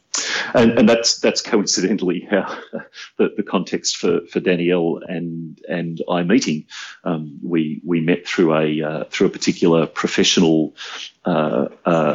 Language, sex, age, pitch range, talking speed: English, male, 40-59, 85-105 Hz, 140 wpm